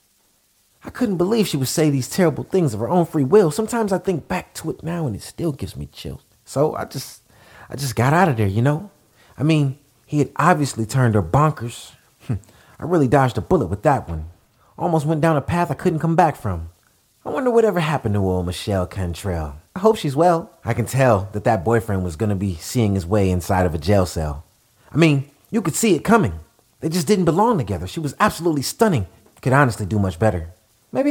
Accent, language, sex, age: American, English, male, 30-49